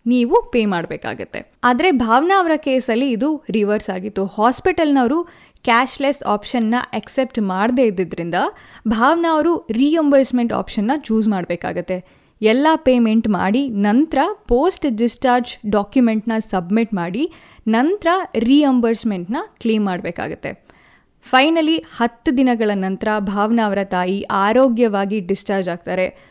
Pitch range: 210-275 Hz